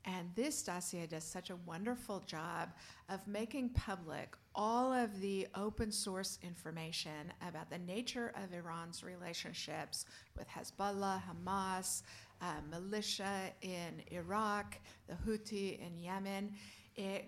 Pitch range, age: 175-225 Hz, 50-69